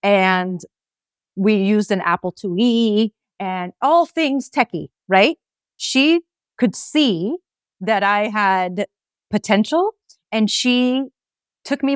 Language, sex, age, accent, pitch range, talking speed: English, female, 30-49, American, 185-235 Hz, 110 wpm